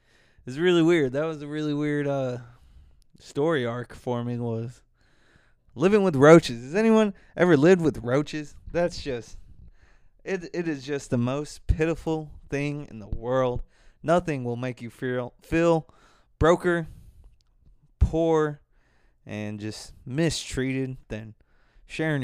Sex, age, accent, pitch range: male, 20-39, American, 115-155 Hz